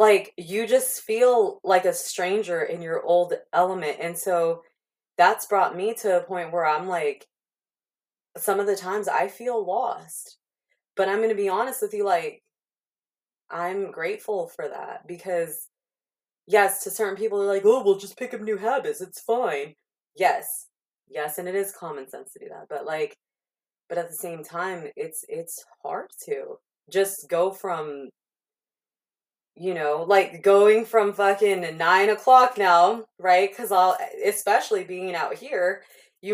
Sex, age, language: female, 20-39, English